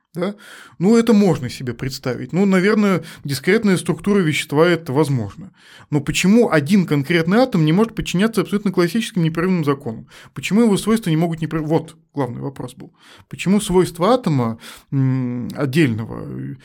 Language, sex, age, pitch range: Russian, male, 20-39, 130-170 Hz